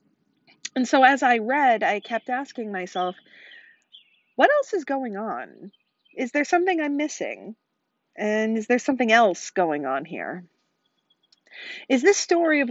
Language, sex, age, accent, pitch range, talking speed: English, female, 40-59, American, 190-285 Hz, 145 wpm